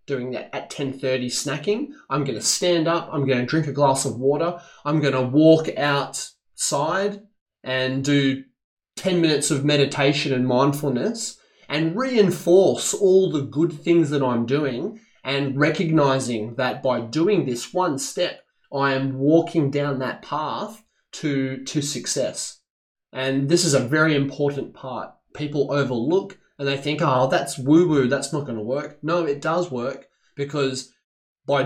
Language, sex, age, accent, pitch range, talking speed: English, male, 20-39, Australian, 135-170 Hz, 155 wpm